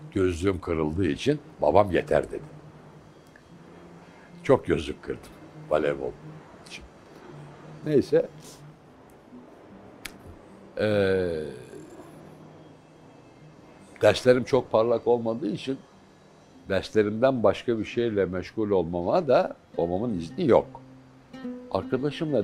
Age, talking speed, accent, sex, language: 60-79, 80 wpm, native, male, Turkish